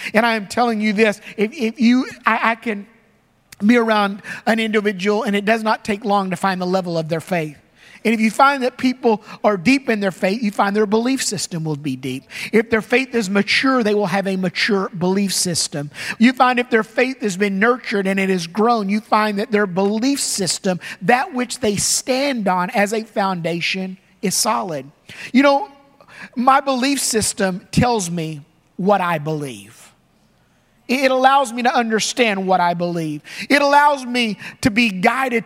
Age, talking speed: 50-69, 190 wpm